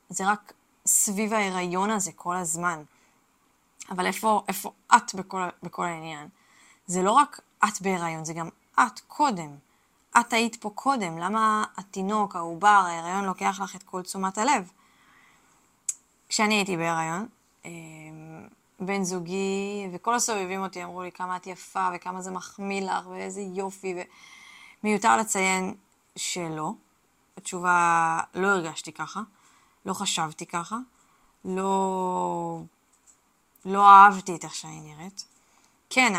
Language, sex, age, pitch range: Hebrew, female, 20-39, 170-200 Hz